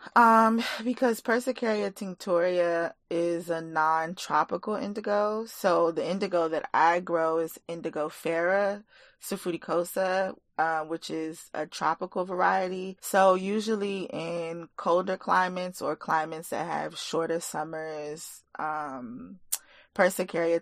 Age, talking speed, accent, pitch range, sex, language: 20-39, 110 wpm, American, 160-190 Hz, female, English